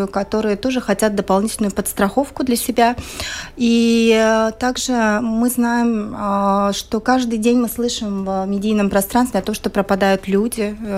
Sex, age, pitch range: female, 30-49, 200-245 Hz